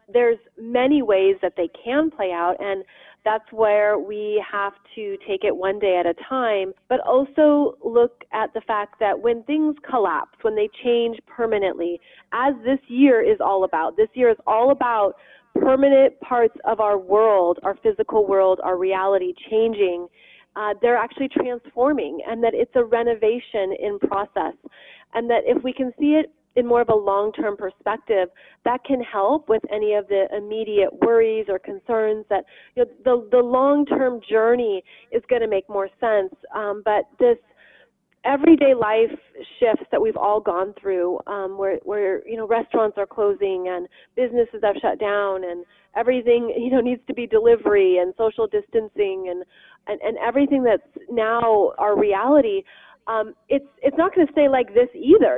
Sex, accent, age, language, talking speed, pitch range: female, American, 30-49, English, 170 wpm, 205-270 Hz